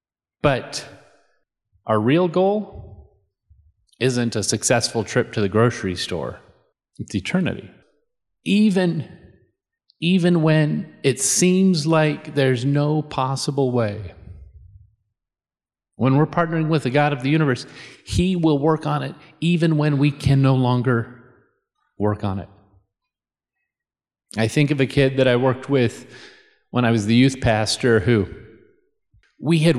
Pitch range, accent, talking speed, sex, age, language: 105-145 Hz, American, 130 wpm, male, 30-49, English